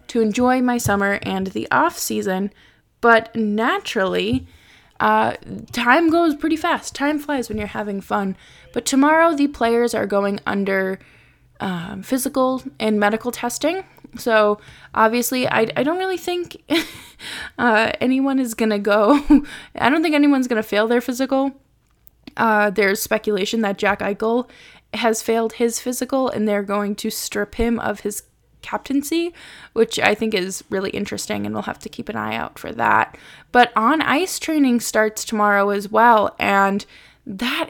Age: 10-29